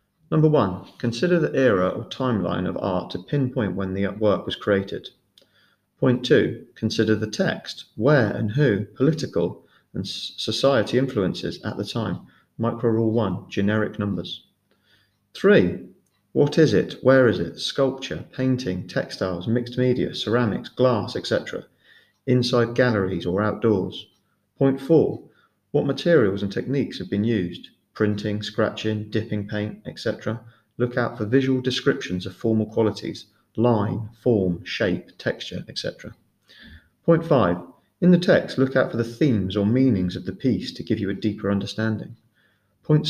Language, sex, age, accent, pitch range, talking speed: English, male, 40-59, British, 100-130 Hz, 145 wpm